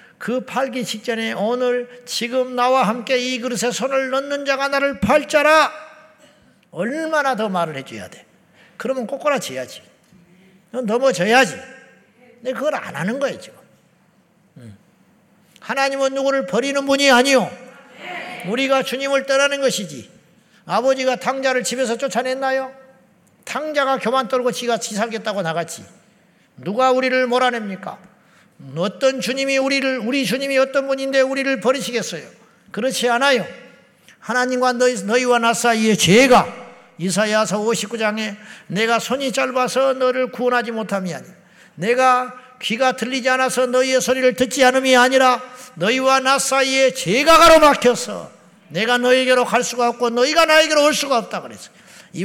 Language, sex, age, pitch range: Korean, male, 50-69, 215-265 Hz